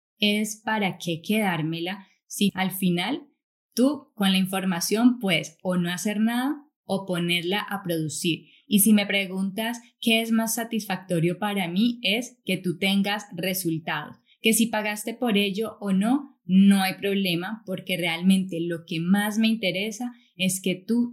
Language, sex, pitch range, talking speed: Spanish, female, 180-215 Hz, 155 wpm